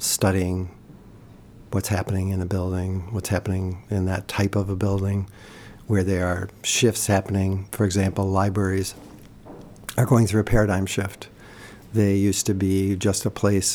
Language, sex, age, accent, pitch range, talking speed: English, male, 50-69, American, 95-110 Hz, 155 wpm